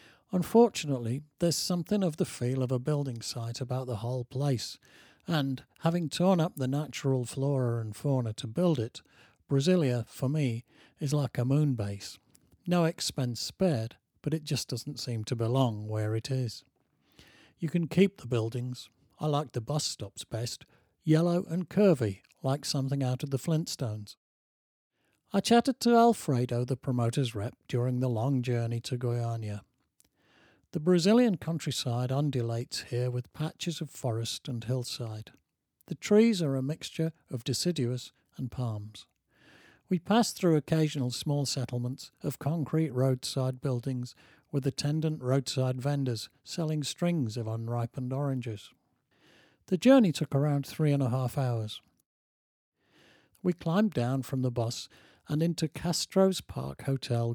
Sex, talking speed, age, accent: male, 145 wpm, 50-69, British